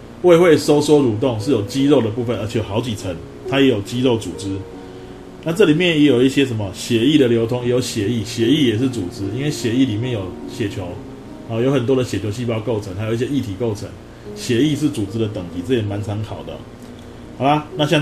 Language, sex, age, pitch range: Chinese, male, 20-39, 105-135 Hz